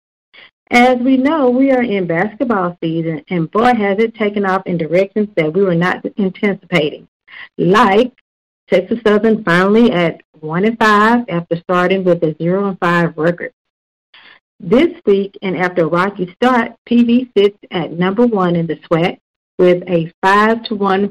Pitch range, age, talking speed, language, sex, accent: 175-225 Hz, 50-69, 160 wpm, English, female, American